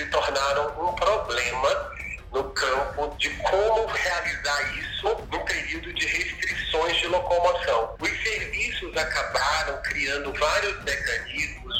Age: 50-69